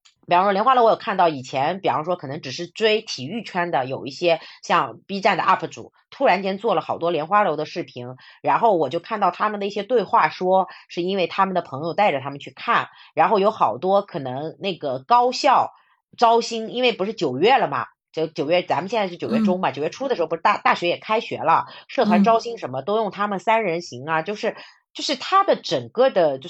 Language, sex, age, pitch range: Chinese, female, 30-49, 160-225 Hz